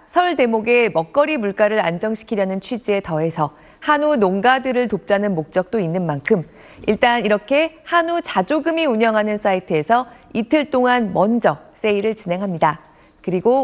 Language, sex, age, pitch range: Korean, female, 50-69, 185-275 Hz